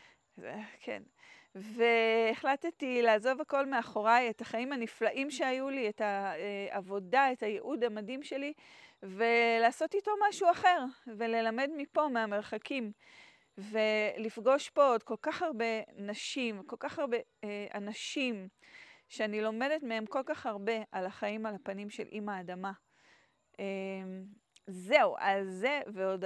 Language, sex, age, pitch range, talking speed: Hebrew, female, 30-49, 205-265 Hz, 115 wpm